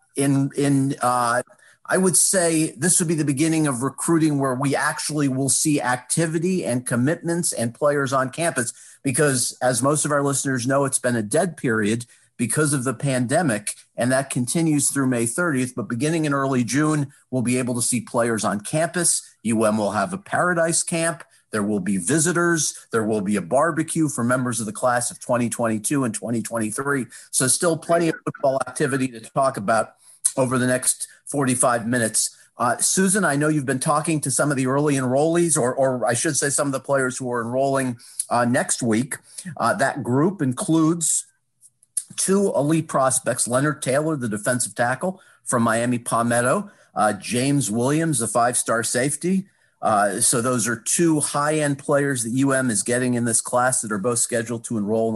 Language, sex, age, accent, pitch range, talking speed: English, male, 40-59, American, 120-155 Hz, 185 wpm